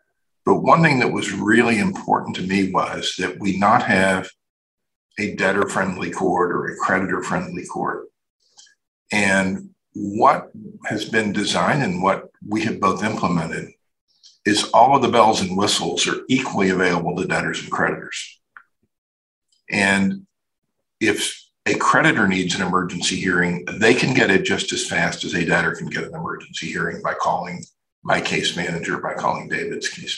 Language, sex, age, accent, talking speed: English, male, 50-69, American, 155 wpm